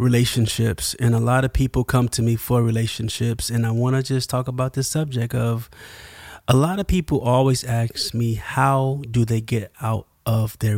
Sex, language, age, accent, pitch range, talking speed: male, English, 30-49, American, 110-135 Hz, 195 wpm